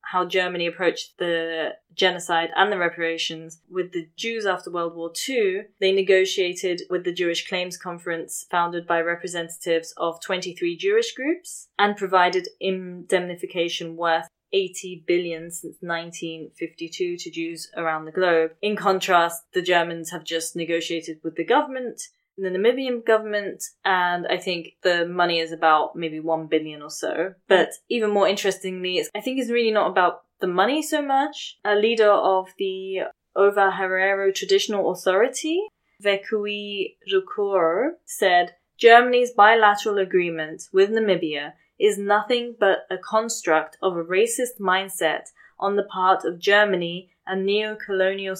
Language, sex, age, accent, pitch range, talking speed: English, female, 20-39, British, 170-210 Hz, 140 wpm